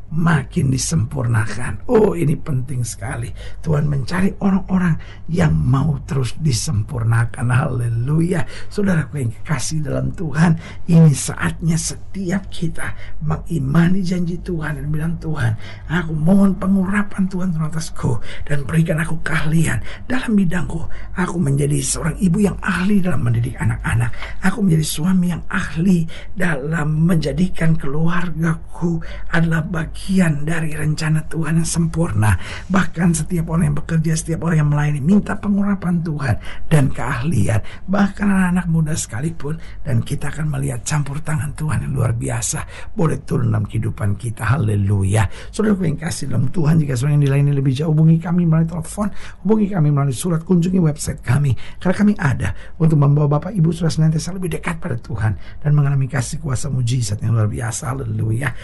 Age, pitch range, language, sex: 60-79, 120-165 Hz, Indonesian, male